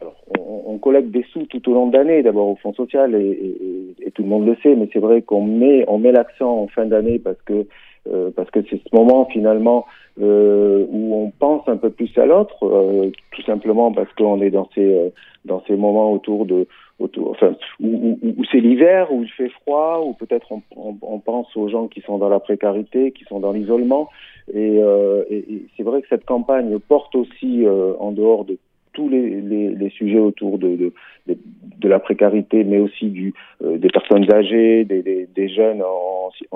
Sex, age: male, 50-69